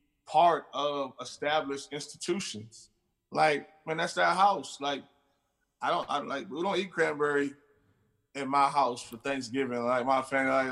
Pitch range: 140-160 Hz